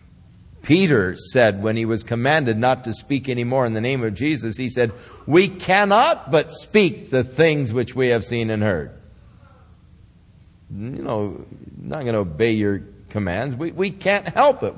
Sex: male